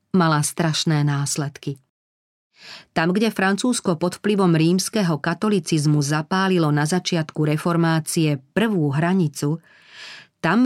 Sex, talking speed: female, 95 wpm